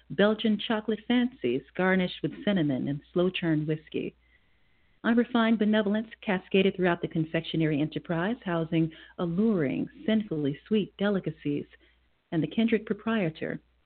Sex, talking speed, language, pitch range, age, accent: female, 110 wpm, English, 170-210 Hz, 40-59, American